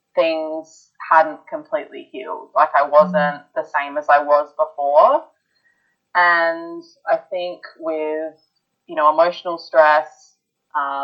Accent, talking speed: Australian, 120 wpm